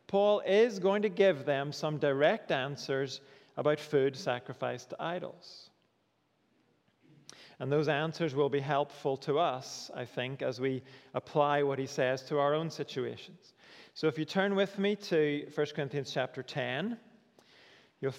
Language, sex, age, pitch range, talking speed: English, male, 40-59, 140-170 Hz, 150 wpm